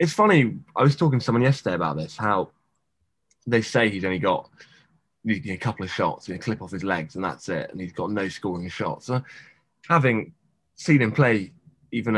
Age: 20-39